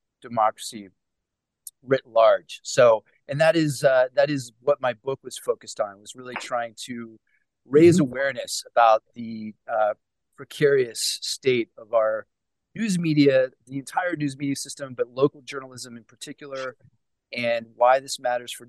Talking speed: 150 wpm